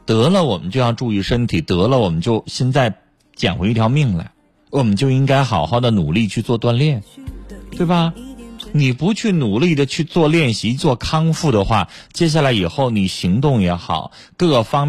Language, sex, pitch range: Chinese, male, 95-145 Hz